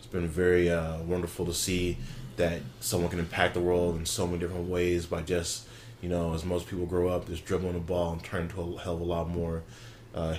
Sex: male